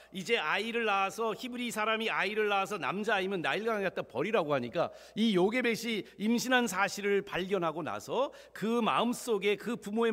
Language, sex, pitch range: Korean, male, 135-220 Hz